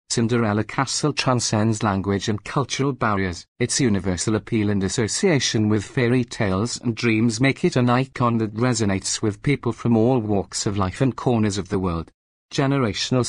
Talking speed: 165 wpm